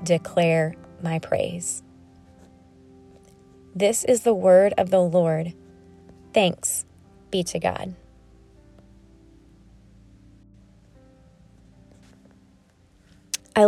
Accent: American